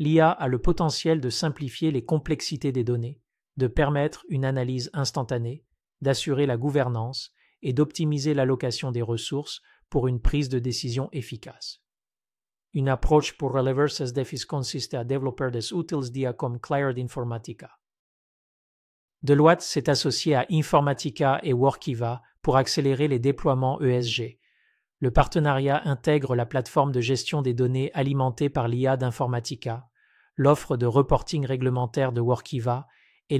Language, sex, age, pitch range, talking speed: French, male, 40-59, 125-145 Hz, 135 wpm